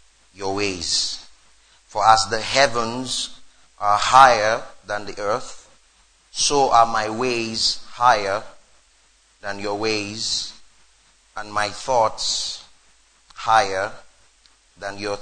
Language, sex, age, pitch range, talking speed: English, male, 30-49, 110-130 Hz, 100 wpm